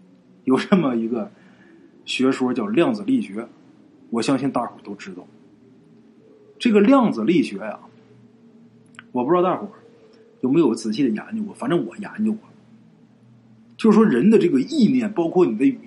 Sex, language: male, Chinese